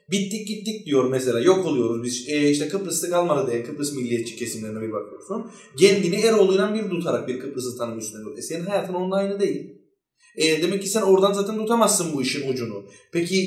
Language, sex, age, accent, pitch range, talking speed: Turkish, male, 30-49, native, 145-200 Hz, 185 wpm